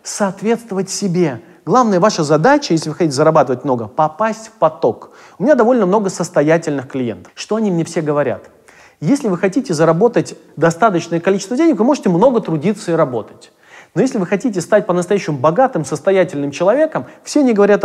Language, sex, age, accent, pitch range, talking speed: Russian, male, 30-49, native, 170-235 Hz, 165 wpm